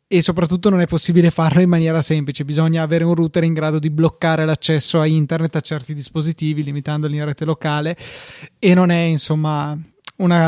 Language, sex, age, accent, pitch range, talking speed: Italian, male, 20-39, native, 150-170 Hz, 185 wpm